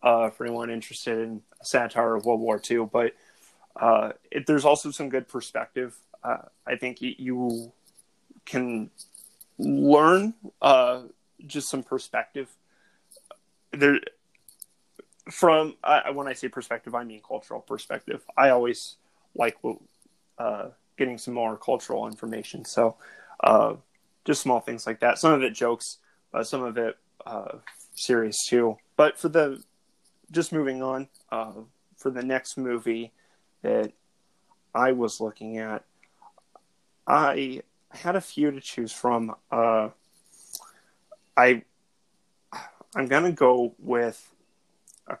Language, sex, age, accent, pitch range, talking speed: English, male, 20-39, American, 115-145 Hz, 130 wpm